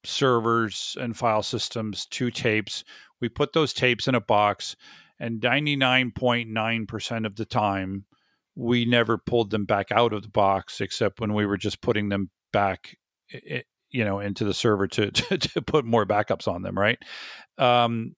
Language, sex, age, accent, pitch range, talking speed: English, male, 40-59, American, 105-125 Hz, 180 wpm